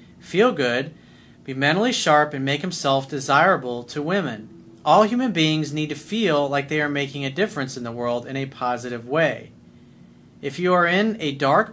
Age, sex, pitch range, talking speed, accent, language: 40-59, male, 125-180 Hz, 185 wpm, American, English